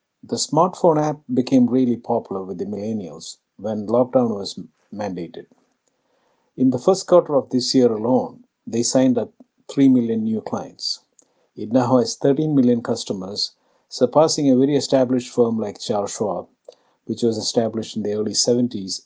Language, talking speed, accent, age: English, 155 wpm, Indian, 50-69